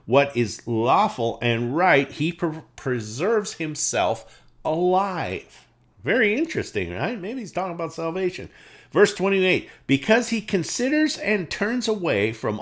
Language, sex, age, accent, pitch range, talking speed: English, male, 50-69, American, 130-190 Hz, 125 wpm